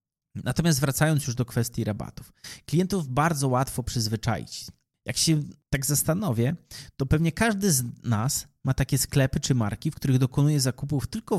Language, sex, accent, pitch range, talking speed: Polish, male, native, 120-160 Hz, 155 wpm